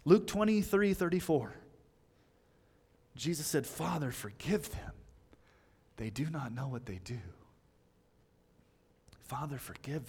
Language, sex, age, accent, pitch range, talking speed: English, male, 30-49, American, 115-155 Hz, 100 wpm